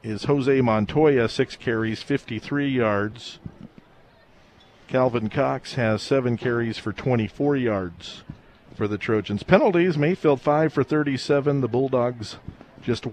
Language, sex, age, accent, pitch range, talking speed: English, male, 50-69, American, 110-140 Hz, 120 wpm